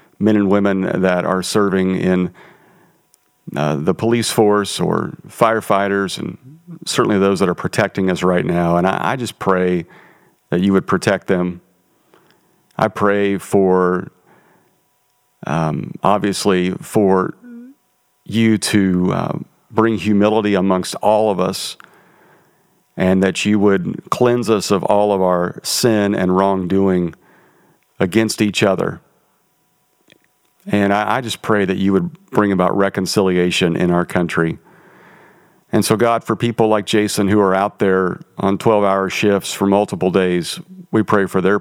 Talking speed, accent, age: 140 wpm, American, 40-59